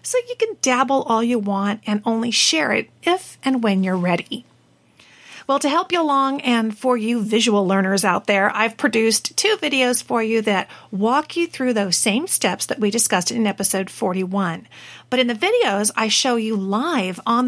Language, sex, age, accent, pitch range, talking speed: English, female, 40-59, American, 210-265 Hz, 190 wpm